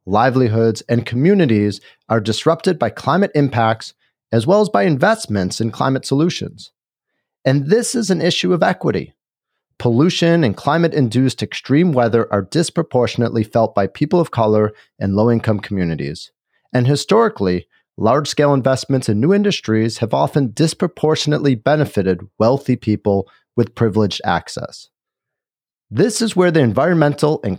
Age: 40-59